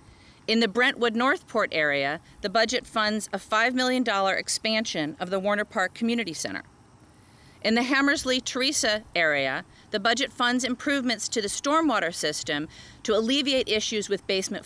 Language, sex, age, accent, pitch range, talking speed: English, female, 40-59, American, 195-245 Hz, 140 wpm